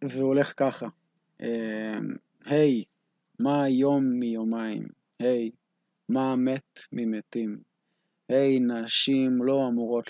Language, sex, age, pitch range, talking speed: Hebrew, male, 20-39, 110-130 Hz, 100 wpm